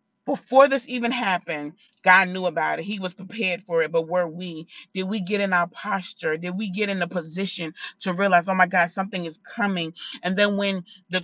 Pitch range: 170-205 Hz